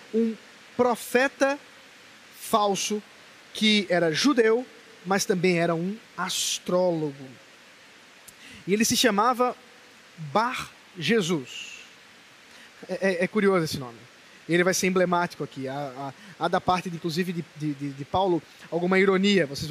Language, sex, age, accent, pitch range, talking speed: Portuguese, male, 20-39, Brazilian, 180-245 Hz, 120 wpm